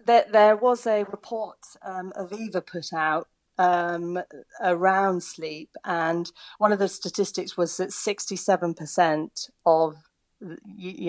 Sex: female